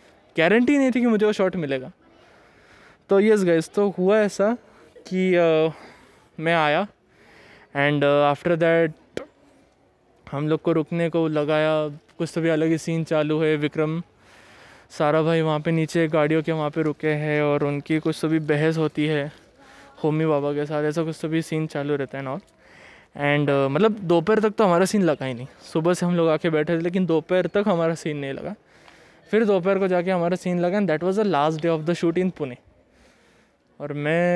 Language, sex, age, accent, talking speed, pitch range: Hindi, male, 20-39, native, 195 wpm, 155-200 Hz